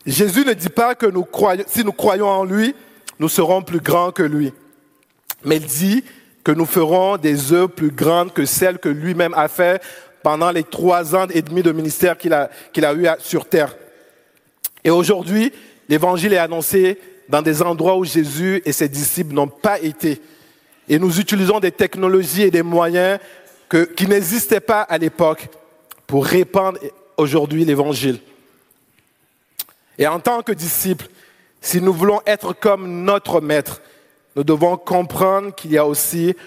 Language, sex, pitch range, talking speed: French, male, 155-195 Hz, 170 wpm